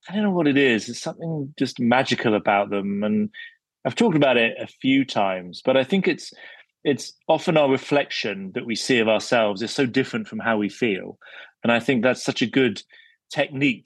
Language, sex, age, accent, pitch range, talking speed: English, male, 30-49, British, 105-140 Hz, 210 wpm